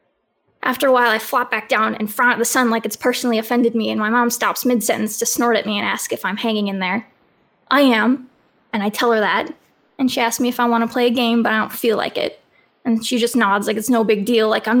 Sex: female